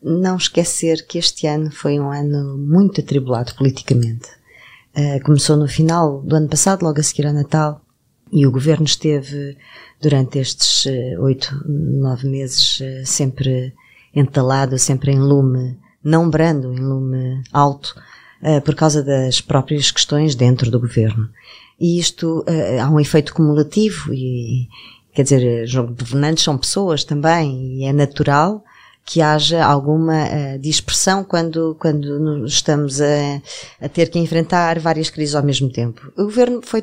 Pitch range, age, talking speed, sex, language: 135-165 Hz, 20-39, 140 wpm, female, Portuguese